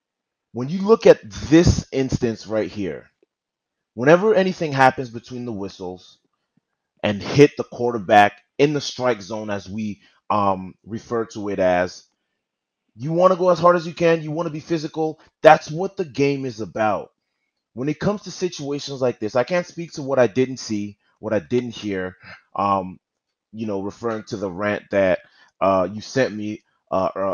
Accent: American